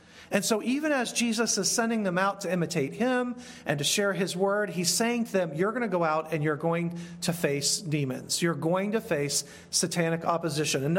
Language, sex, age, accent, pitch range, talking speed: English, male, 40-59, American, 160-210 Hz, 215 wpm